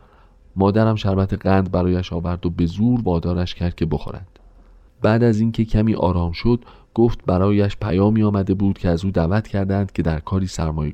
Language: Persian